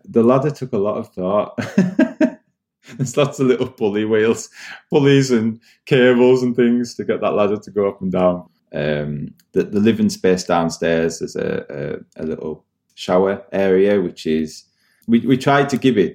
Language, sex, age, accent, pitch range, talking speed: English, male, 20-39, British, 80-100 Hz, 180 wpm